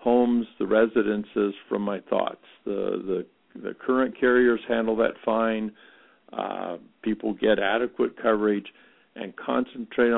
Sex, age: male, 60-79